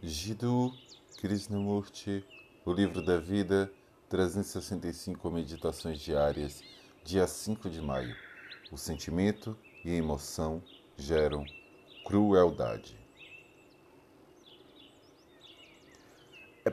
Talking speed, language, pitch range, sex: 75 wpm, Portuguese, 85-110 Hz, male